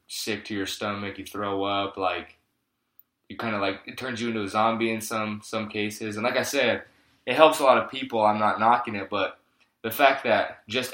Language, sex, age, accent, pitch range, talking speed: English, male, 20-39, American, 105-120 Hz, 225 wpm